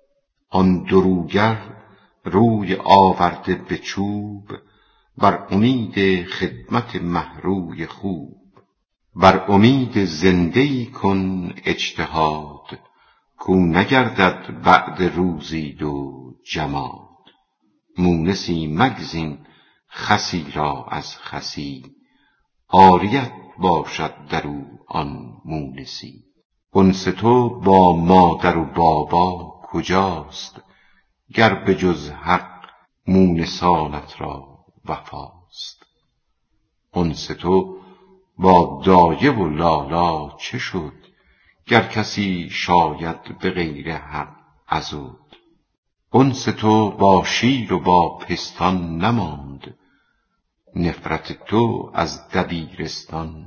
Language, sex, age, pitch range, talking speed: Persian, female, 50-69, 80-100 Hz, 85 wpm